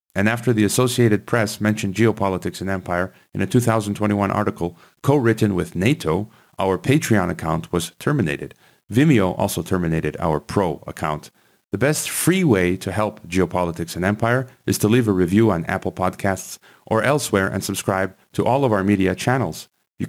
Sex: male